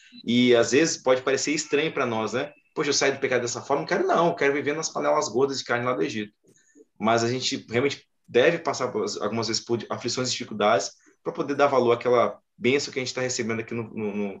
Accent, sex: Brazilian, male